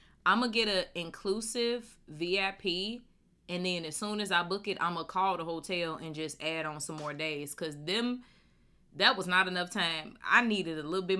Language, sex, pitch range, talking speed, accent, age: English, female, 155-200 Hz, 215 wpm, American, 20-39